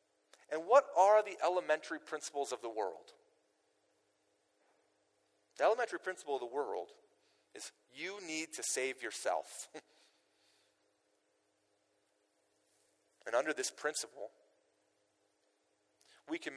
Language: English